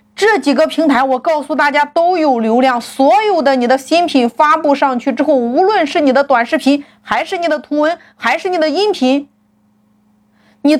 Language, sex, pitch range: Chinese, female, 215-320 Hz